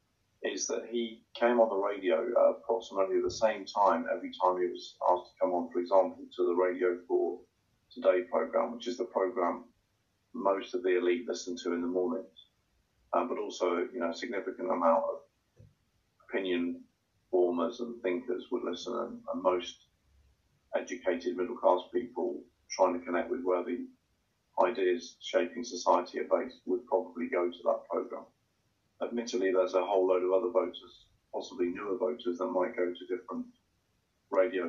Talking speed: 160 wpm